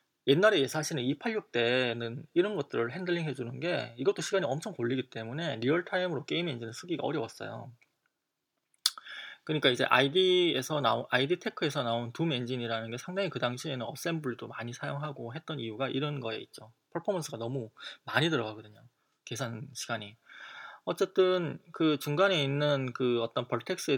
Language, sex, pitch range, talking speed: English, male, 120-180 Hz, 135 wpm